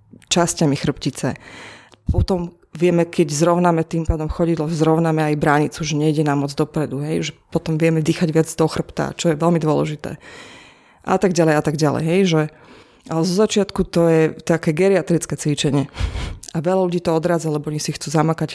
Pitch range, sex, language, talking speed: 155-180 Hz, female, Slovak, 180 wpm